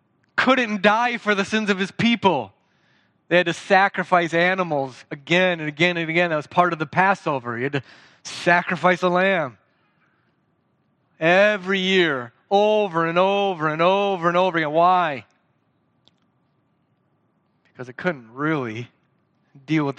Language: English